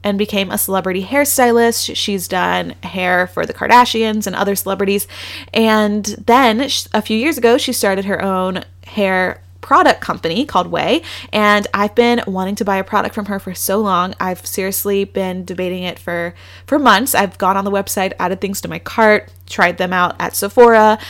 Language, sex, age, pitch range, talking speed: English, female, 20-39, 185-215 Hz, 185 wpm